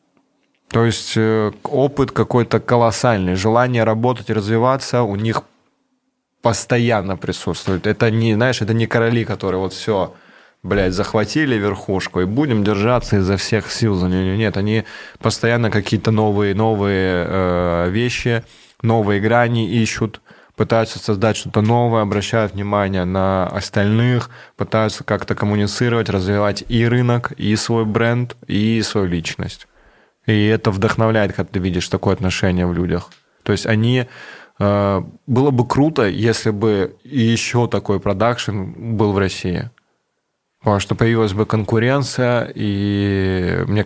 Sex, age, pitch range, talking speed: male, 20-39, 100-115 Hz, 130 wpm